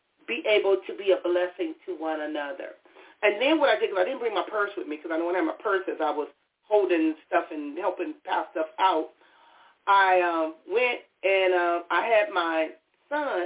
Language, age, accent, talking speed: English, 40-59, American, 220 wpm